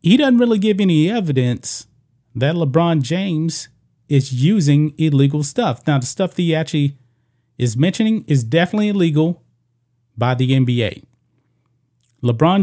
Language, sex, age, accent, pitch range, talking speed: English, male, 30-49, American, 125-155 Hz, 135 wpm